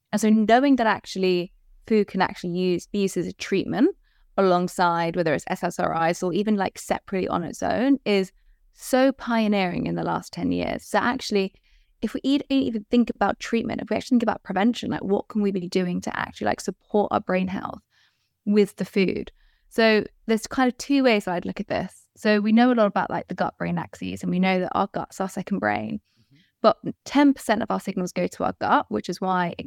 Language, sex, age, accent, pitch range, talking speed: English, female, 20-39, British, 185-220 Hz, 215 wpm